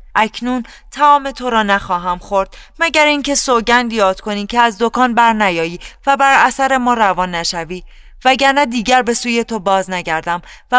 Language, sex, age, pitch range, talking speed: Persian, female, 30-49, 155-230 Hz, 165 wpm